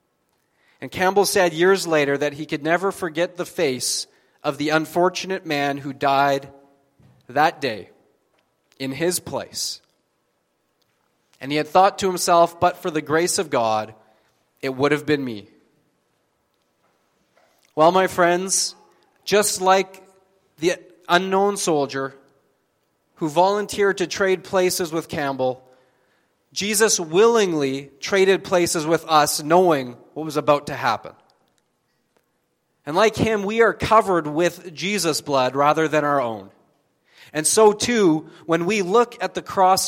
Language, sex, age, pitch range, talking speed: English, male, 30-49, 140-190 Hz, 135 wpm